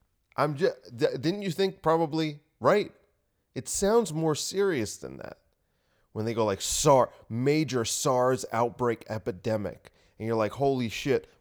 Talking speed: 140 wpm